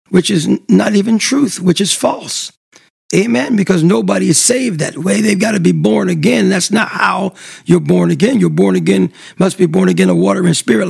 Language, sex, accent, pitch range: English, male, American, 185-260 Hz